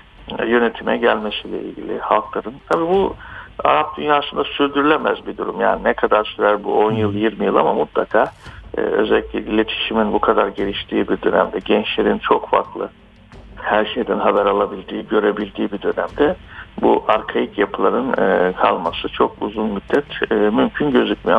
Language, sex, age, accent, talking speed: Turkish, male, 60-79, native, 135 wpm